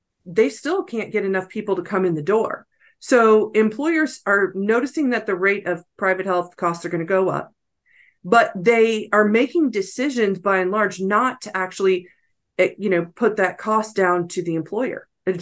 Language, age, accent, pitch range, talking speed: English, 40-59, American, 185-225 Hz, 185 wpm